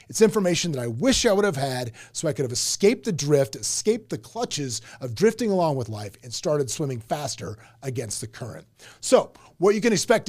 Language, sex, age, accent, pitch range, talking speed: English, male, 30-49, American, 130-195 Hz, 210 wpm